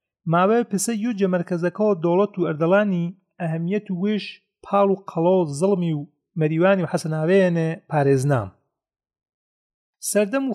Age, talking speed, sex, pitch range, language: 40-59, 125 wpm, male, 160-200 Hz, Persian